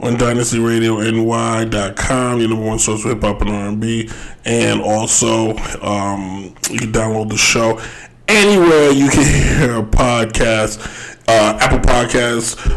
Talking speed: 125 wpm